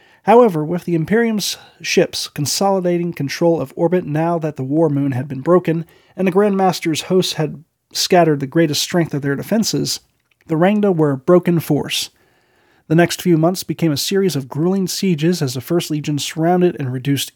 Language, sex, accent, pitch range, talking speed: English, male, American, 140-175 Hz, 185 wpm